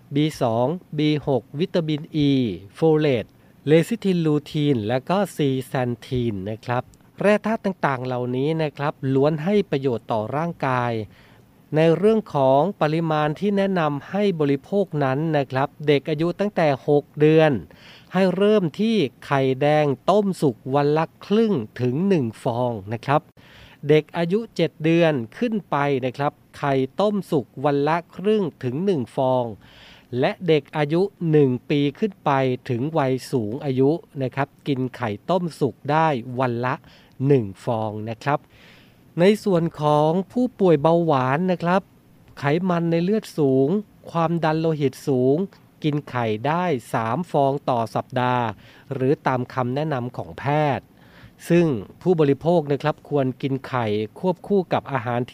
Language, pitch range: Thai, 130-165 Hz